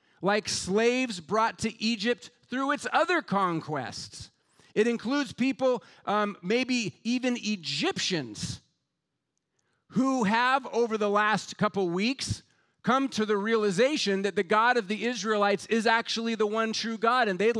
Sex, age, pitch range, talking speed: male, 40-59, 175-230 Hz, 140 wpm